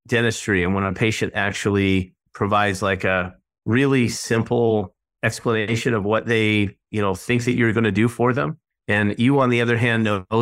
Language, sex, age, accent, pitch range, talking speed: English, male, 30-49, American, 100-115 Hz, 190 wpm